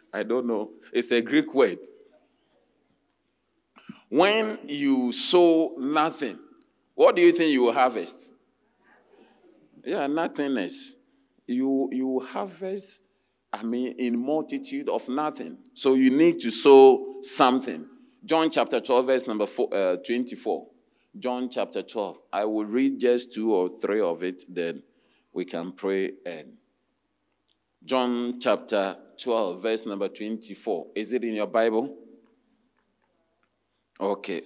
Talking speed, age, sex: 125 wpm, 50-69, male